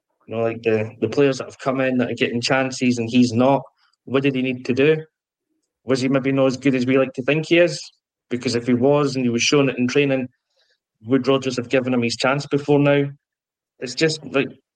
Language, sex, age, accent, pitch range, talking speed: English, male, 20-39, British, 120-140 Hz, 240 wpm